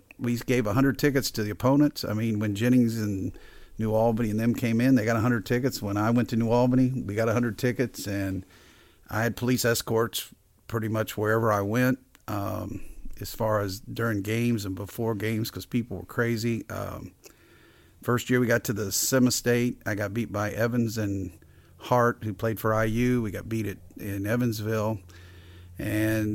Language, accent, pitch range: English, American, 105-125 Hz